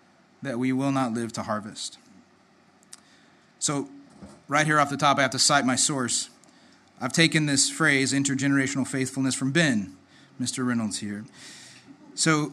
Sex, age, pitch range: male, 30-49, 130-155 Hz